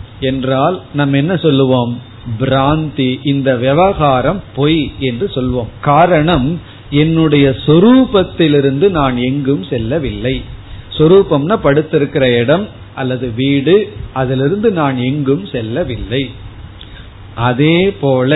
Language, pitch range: Tamil, 125-170 Hz